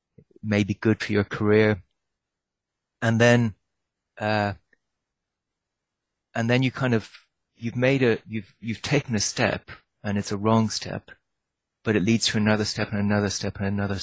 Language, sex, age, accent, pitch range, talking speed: English, male, 30-49, British, 100-110 Hz, 160 wpm